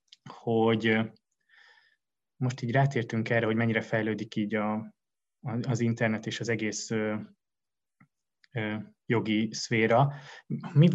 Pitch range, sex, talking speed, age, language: 110-125 Hz, male, 110 wpm, 20-39, Hungarian